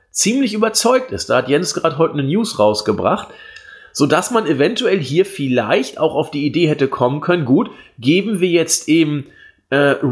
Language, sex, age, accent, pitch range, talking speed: German, male, 40-59, German, 120-170 Hz, 170 wpm